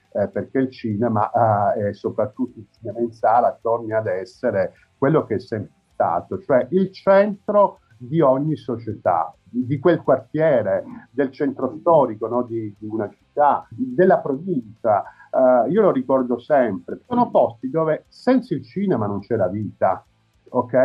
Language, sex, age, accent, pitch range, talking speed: Italian, male, 50-69, native, 115-165 Hz, 155 wpm